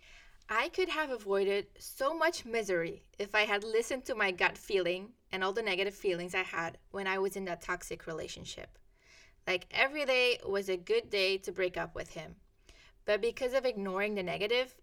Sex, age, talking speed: female, 20-39, 190 wpm